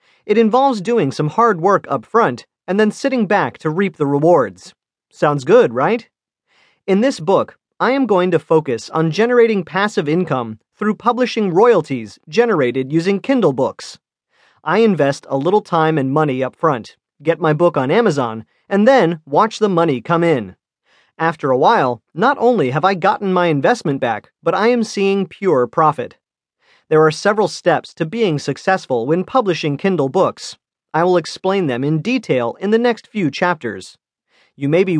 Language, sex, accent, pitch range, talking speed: English, male, American, 150-210 Hz, 175 wpm